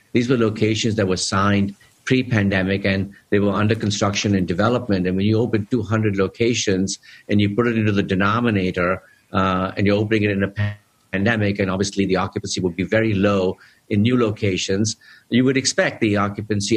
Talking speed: 185 wpm